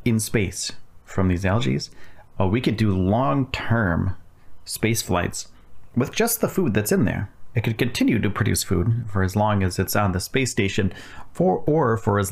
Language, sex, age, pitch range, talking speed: English, male, 30-49, 100-115 Hz, 180 wpm